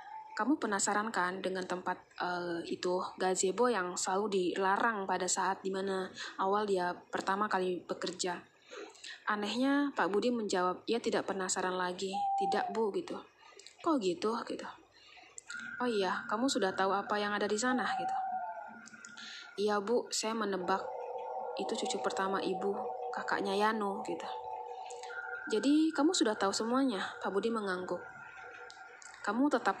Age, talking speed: 20-39, 135 wpm